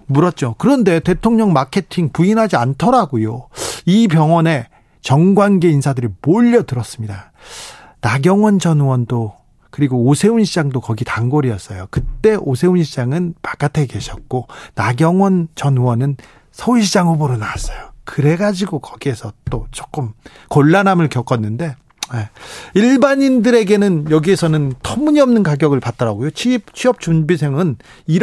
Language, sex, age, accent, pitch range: Korean, male, 40-59, native, 130-195 Hz